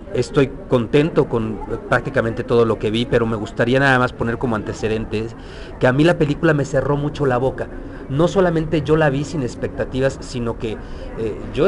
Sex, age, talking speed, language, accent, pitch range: male, 40-59, 190 wpm, English, Mexican, 115-150 Hz